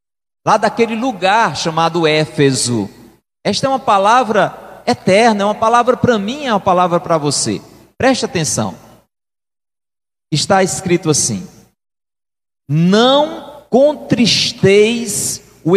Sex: male